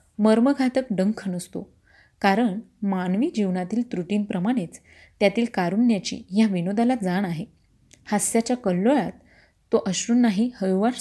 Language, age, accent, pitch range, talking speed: Marathi, 30-49, native, 190-235 Hz, 100 wpm